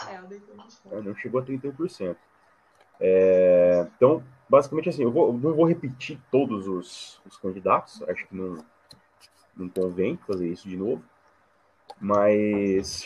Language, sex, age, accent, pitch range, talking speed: Portuguese, male, 30-49, Brazilian, 105-165 Hz, 135 wpm